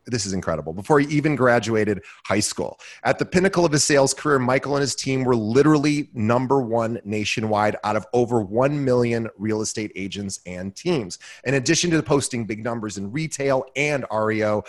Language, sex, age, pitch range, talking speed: English, male, 30-49, 105-135 Hz, 190 wpm